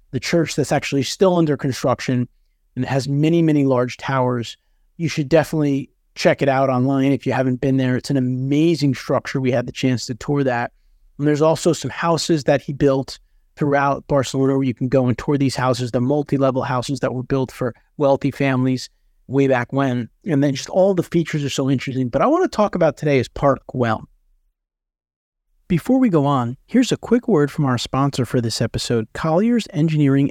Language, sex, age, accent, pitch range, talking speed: English, male, 30-49, American, 130-160 Hz, 200 wpm